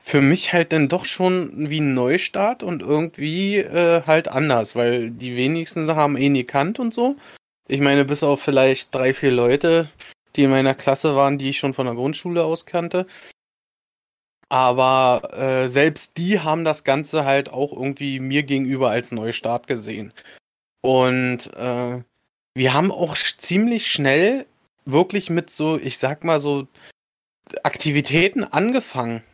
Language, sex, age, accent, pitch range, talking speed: German, male, 30-49, German, 135-170 Hz, 155 wpm